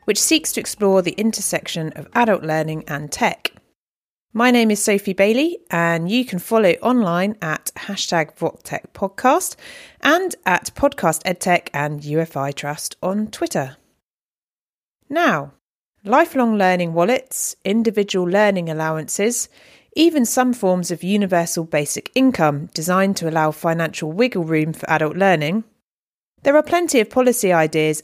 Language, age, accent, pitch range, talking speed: English, 30-49, British, 160-230 Hz, 135 wpm